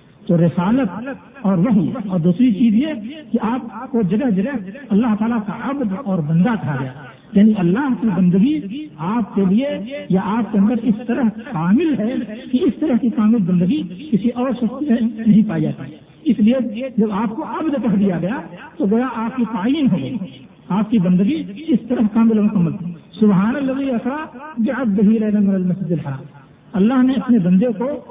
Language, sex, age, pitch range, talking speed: Urdu, male, 60-79, 190-245 Hz, 175 wpm